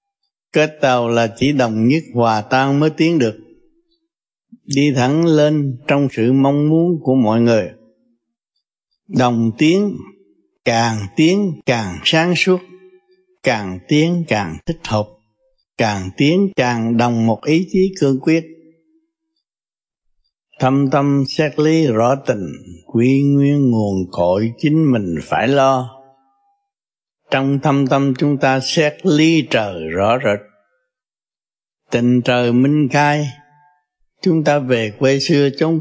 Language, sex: Vietnamese, male